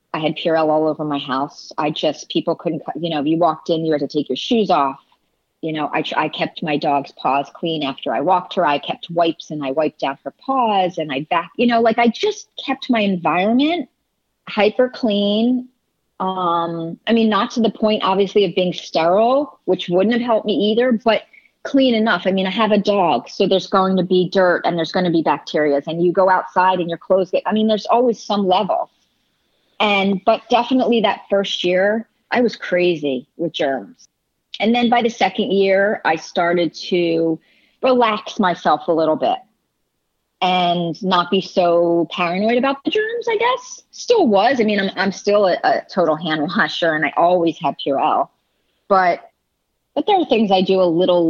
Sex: female